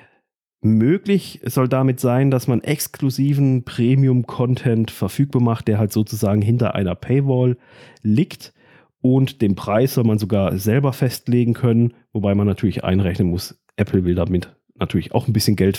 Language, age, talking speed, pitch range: German, 40-59, 150 wpm, 105-130 Hz